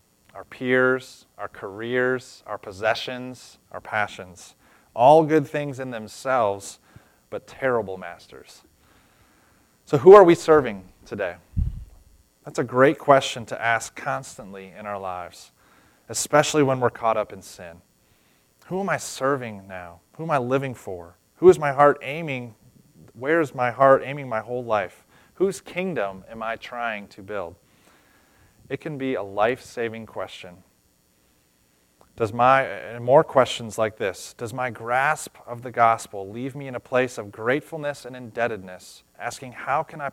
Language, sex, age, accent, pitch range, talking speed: English, male, 30-49, American, 105-135 Hz, 150 wpm